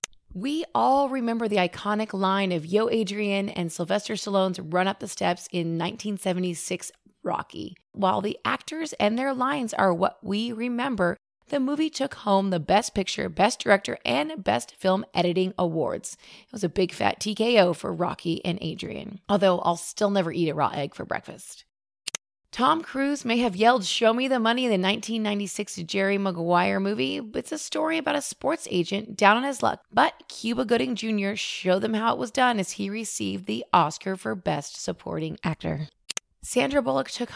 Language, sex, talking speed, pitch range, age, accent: English, female, 180 wpm, 180-230 Hz, 30-49, American